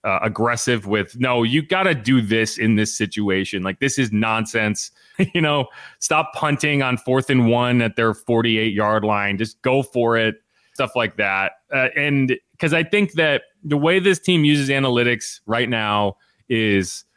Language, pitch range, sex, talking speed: English, 115-145 Hz, male, 180 wpm